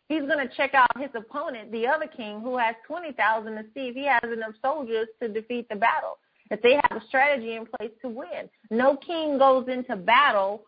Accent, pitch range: American, 220-275 Hz